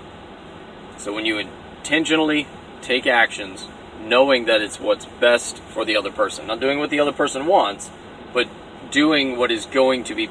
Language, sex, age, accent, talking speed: English, male, 30-49, American, 170 wpm